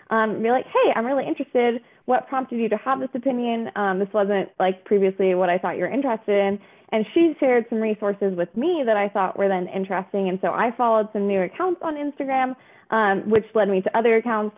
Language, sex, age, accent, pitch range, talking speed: English, female, 20-39, American, 190-240 Hz, 225 wpm